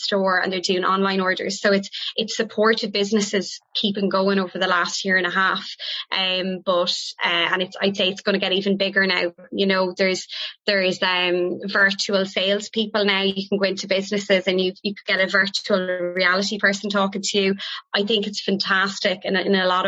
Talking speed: 210 wpm